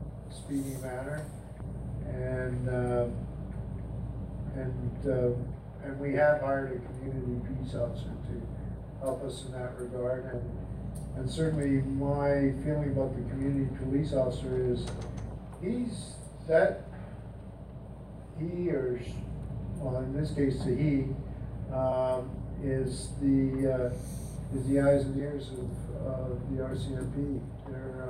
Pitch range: 125-140 Hz